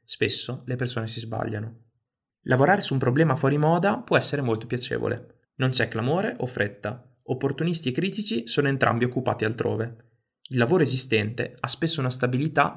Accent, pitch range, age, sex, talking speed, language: native, 115-135 Hz, 20-39, male, 160 wpm, Italian